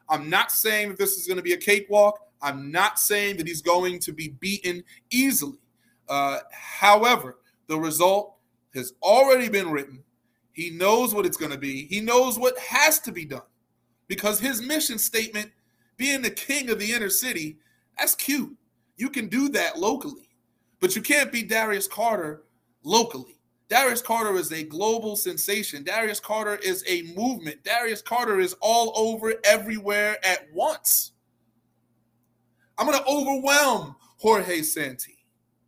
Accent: American